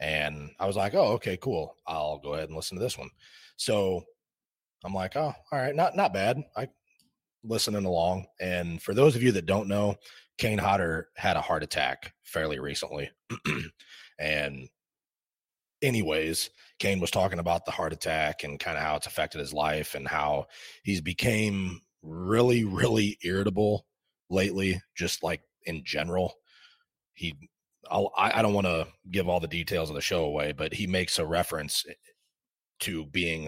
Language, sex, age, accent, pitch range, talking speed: English, male, 30-49, American, 75-100 Hz, 165 wpm